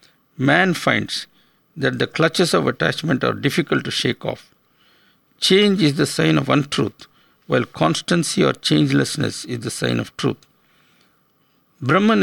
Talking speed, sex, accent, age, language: 135 wpm, male, Indian, 60-79, English